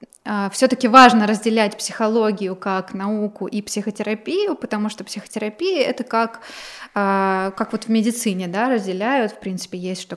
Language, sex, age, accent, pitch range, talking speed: Russian, female, 20-39, native, 205-245 Hz, 125 wpm